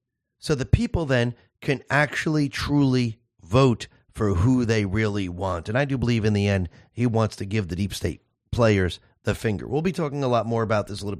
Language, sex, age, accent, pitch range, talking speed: English, male, 40-59, American, 110-145 Hz, 215 wpm